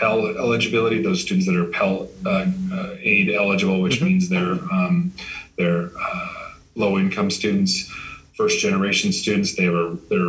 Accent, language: American, English